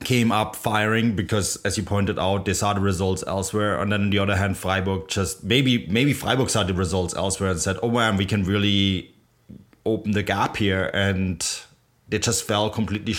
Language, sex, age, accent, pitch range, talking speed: English, male, 20-39, German, 95-115 Hz, 195 wpm